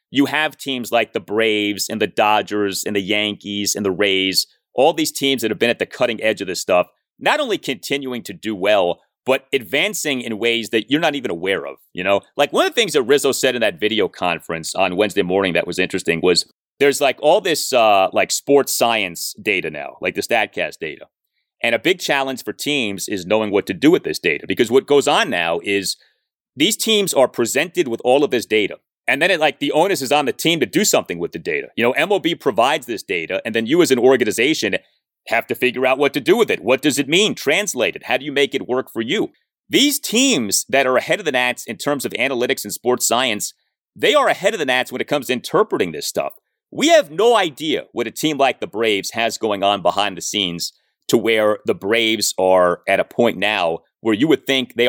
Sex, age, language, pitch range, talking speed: male, 30-49, English, 105-150 Hz, 235 wpm